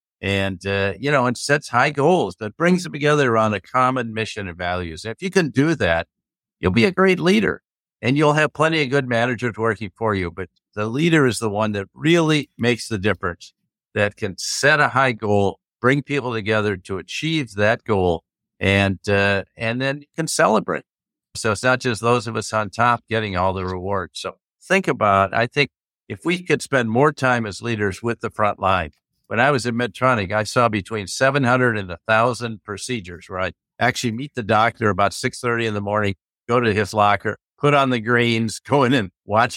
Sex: male